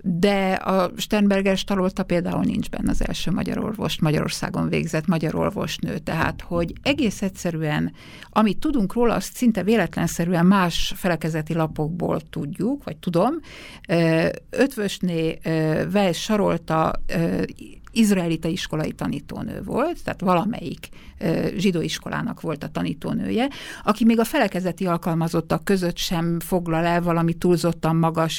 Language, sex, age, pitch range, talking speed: Hungarian, female, 60-79, 165-205 Hz, 115 wpm